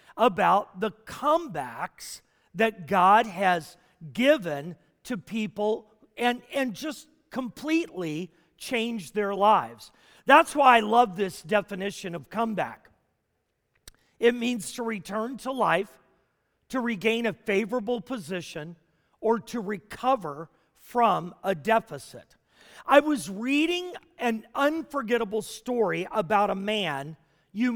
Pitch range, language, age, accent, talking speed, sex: 190-255 Hz, English, 40-59, American, 110 wpm, male